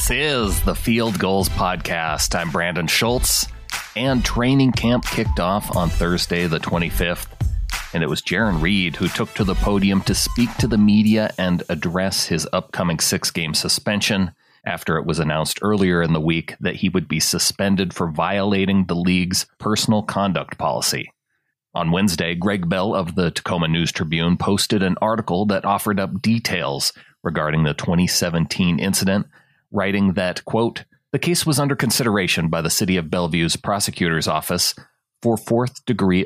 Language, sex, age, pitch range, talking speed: English, male, 30-49, 85-105 Hz, 160 wpm